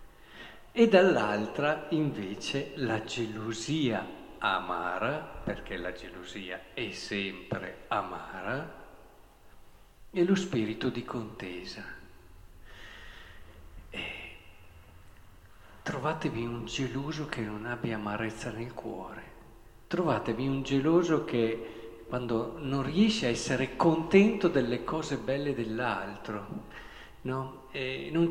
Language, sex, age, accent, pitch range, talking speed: Italian, male, 50-69, native, 115-155 Hz, 95 wpm